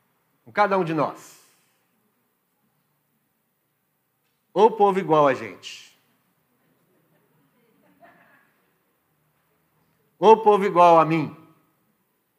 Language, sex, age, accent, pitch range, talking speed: Portuguese, male, 50-69, Brazilian, 140-180 Hz, 80 wpm